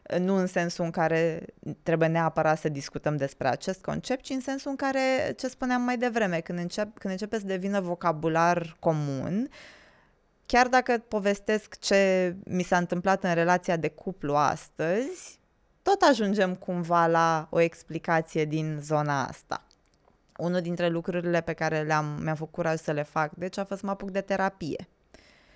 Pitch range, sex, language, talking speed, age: 160-210 Hz, female, Romanian, 160 wpm, 20-39